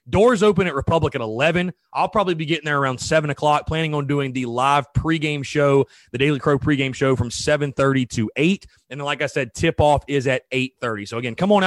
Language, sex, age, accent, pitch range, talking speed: English, male, 30-49, American, 135-175 Hz, 235 wpm